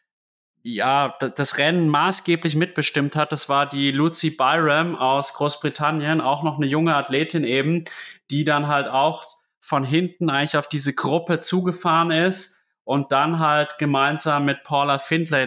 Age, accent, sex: 30-49, German, male